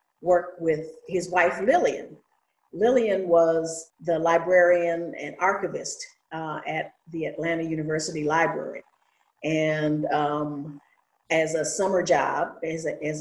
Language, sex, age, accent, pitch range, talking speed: English, female, 50-69, American, 150-180 Hz, 115 wpm